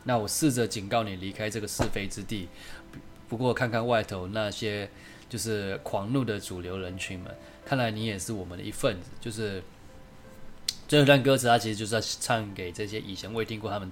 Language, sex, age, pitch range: Chinese, male, 20-39, 100-125 Hz